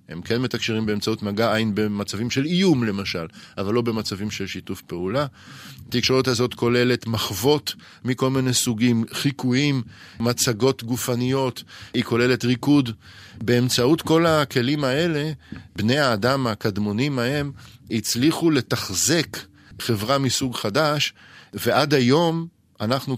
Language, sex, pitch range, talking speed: Hebrew, male, 110-135 Hz, 115 wpm